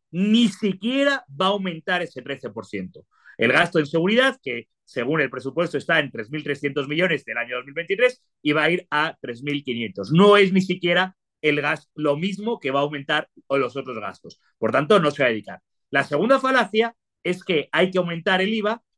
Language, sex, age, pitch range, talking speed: English, male, 30-49, 145-205 Hz, 185 wpm